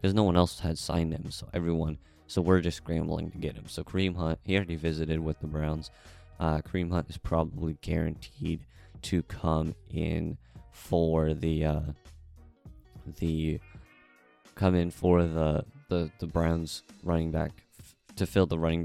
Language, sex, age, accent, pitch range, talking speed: English, male, 20-39, American, 80-100 Hz, 160 wpm